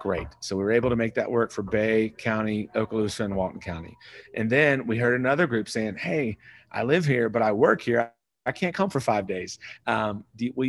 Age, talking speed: 40-59, 230 wpm